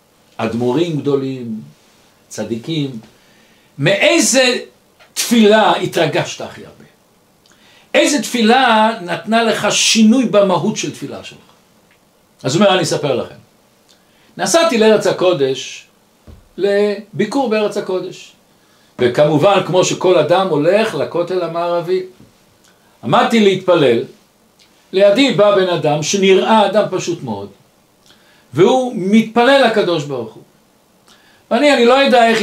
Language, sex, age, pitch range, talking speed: Hebrew, male, 60-79, 165-225 Hz, 105 wpm